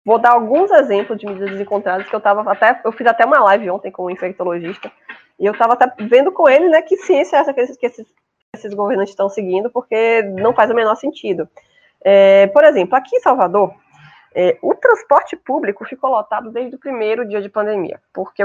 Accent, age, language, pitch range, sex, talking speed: Brazilian, 20-39, Portuguese, 200-270 Hz, female, 210 wpm